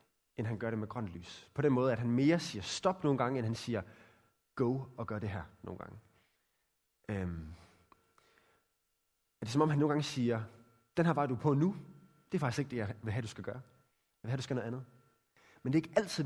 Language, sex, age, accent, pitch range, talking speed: Danish, male, 20-39, native, 110-155 Hz, 240 wpm